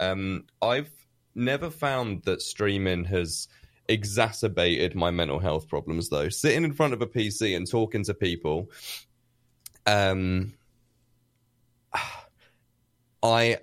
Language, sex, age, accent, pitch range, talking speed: English, male, 20-39, British, 85-115 Hz, 110 wpm